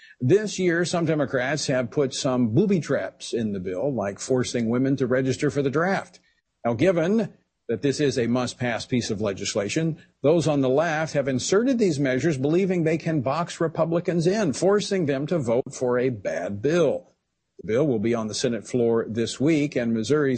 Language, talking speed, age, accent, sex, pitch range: English, 190 wpm, 50-69, American, male, 125-170 Hz